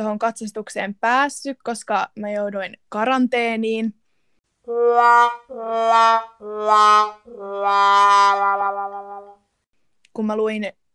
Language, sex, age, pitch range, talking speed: Finnish, female, 20-39, 210-240 Hz, 55 wpm